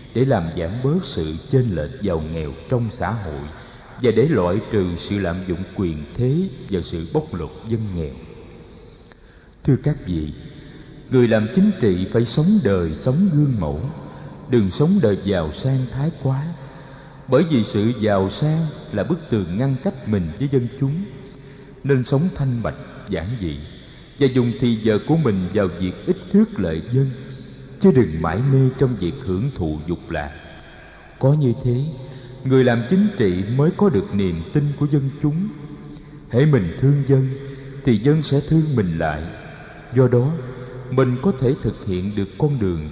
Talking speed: 175 wpm